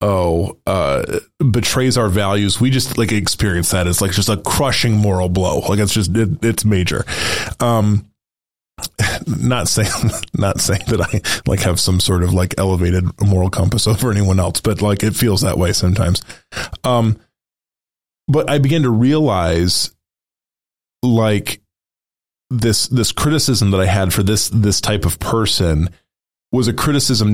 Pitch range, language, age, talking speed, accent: 95-120 Hz, English, 20-39, 155 wpm, American